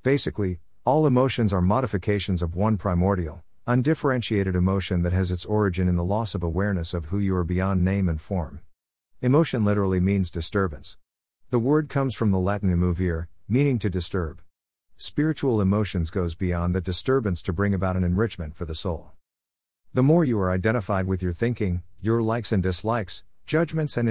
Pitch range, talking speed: 85-115 Hz, 170 wpm